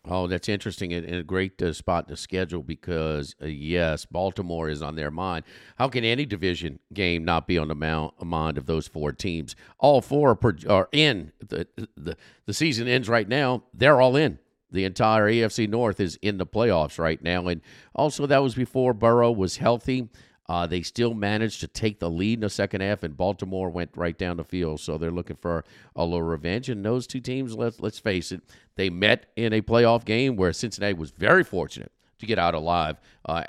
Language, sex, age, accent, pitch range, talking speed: English, male, 50-69, American, 85-120 Hz, 205 wpm